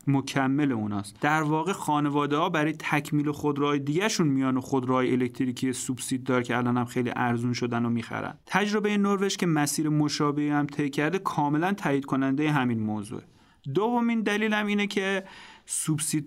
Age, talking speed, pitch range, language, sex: 30-49, 160 wpm, 130-165 Hz, Persian, male